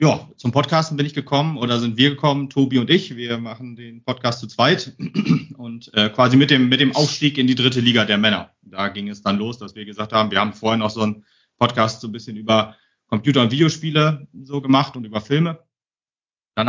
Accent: German